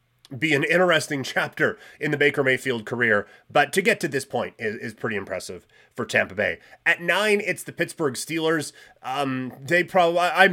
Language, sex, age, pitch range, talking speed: English, male, 30-49, 120-155 Hz, 180 wpm